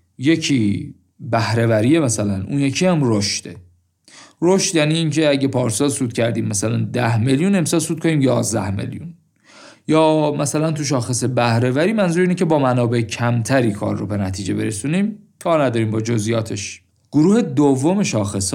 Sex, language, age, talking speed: male, Persian, 50-69, 150 wpm